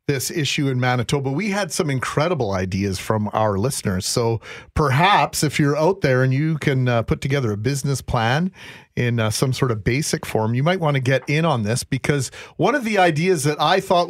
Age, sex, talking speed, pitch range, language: 40-59, male, 215 wpm, 125-160 Hz, English